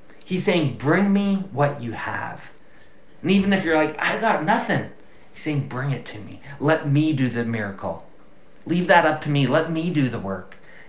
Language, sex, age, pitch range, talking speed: English, male, 30-49, 120-165 Hz, 200 wpm